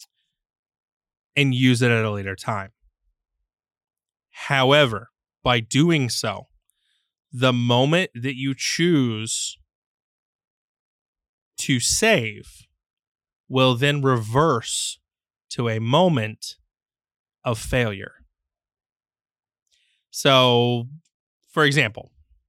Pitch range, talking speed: 115-145 Hz, 75 wpm